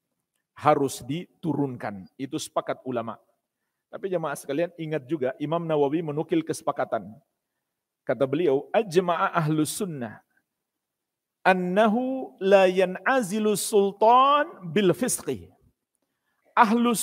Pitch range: 165-245 Hz